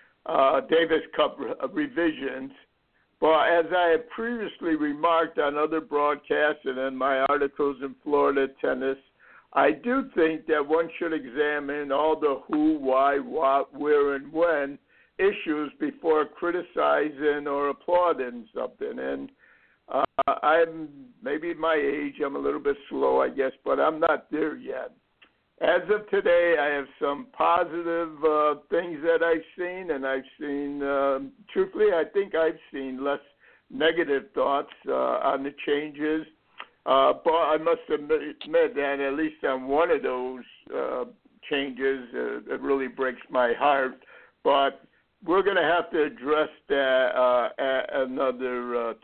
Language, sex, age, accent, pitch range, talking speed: English, male, 60-79, American, 135-170 Hz, 145 wpm